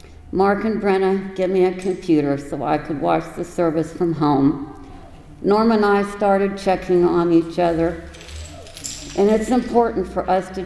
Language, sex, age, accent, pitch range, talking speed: English, female, 60-79, American, 160-195 Hz, 165 wpm